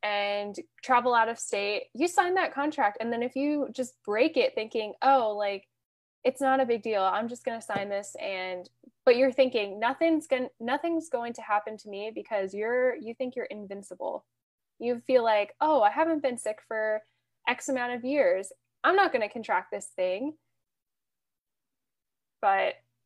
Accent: American